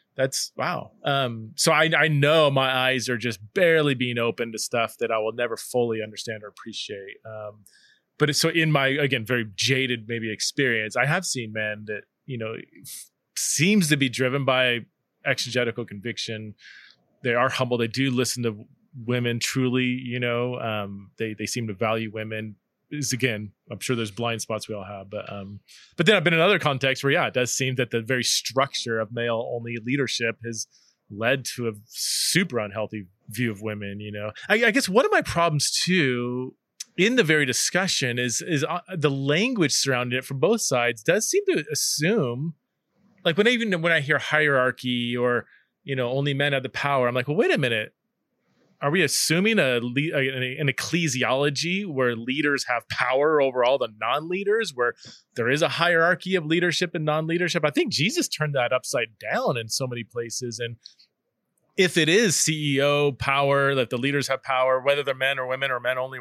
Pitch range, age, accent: 115-150 Hz, 20-39, American